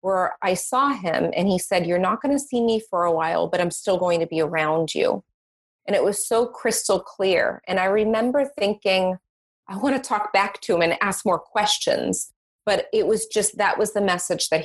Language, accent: English, American